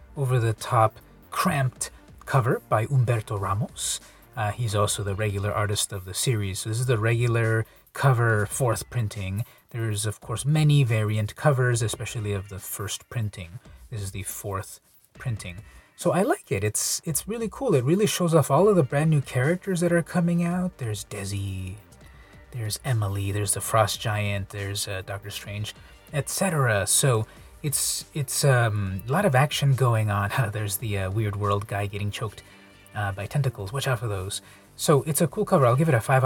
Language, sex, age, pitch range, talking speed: English, male, 30-49, 100-140 Hz, 185 wpm